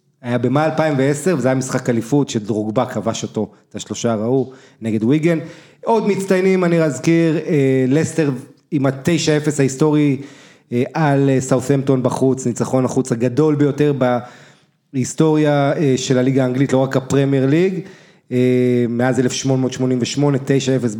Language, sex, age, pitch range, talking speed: English, male, 30-49, 125-155 Hz, 110 wpm